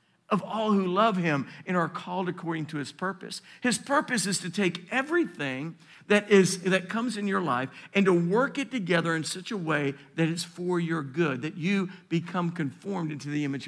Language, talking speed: English, 200 wpm